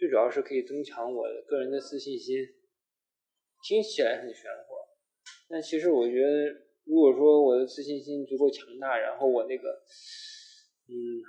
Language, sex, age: Chinese, male, 20-39